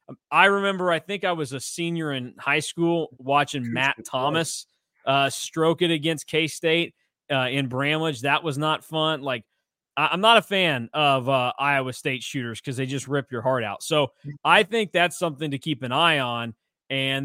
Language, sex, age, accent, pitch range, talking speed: English, male, 20-39, American, 140-165 Hz, 185 wpm